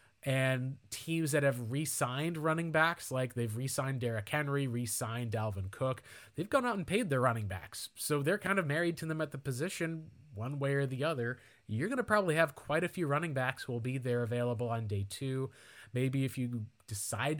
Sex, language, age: male, English, 20-39